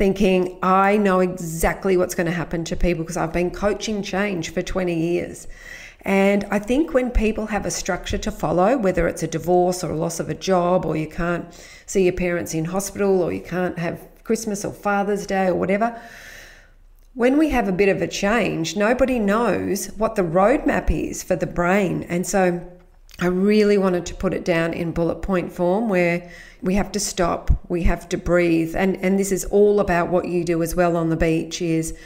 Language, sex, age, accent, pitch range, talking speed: English, female, 40-59, Australian, 175-195 Hz, 205 wpm